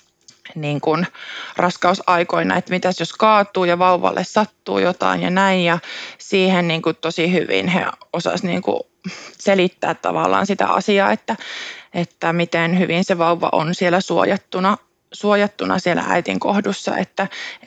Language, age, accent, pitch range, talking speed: Finnish, 20-39, native, 175-205 Hz, 130 wpm